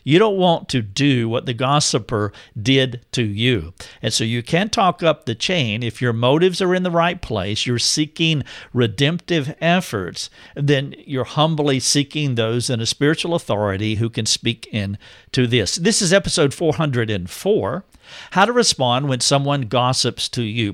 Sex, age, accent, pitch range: male, 50-69, American, 115-150 Hz